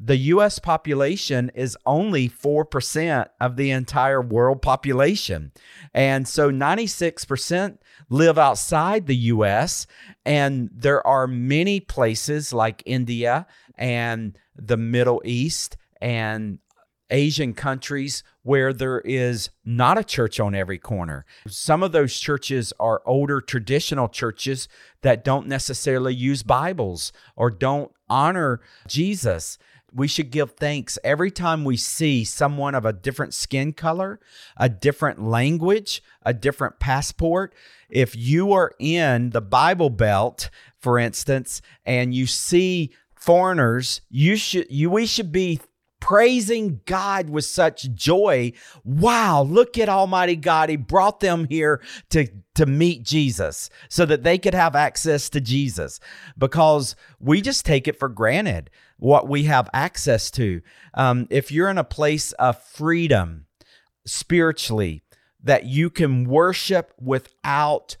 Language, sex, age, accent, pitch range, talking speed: English, male, 50-69, American, 125-160 Hz, 130 wpm